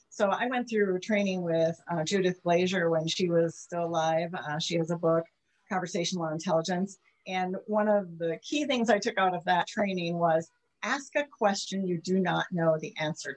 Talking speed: 195 wpm